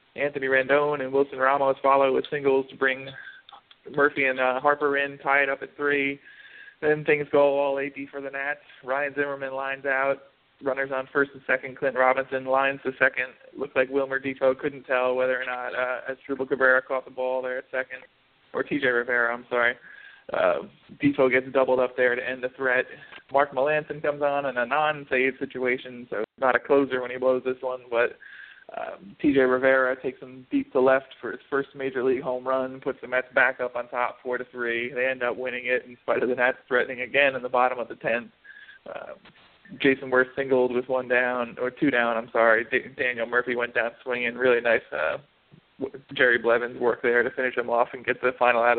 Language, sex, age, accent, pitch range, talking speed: English, male, 20-39, American, 125-140 Hz, 210 wpm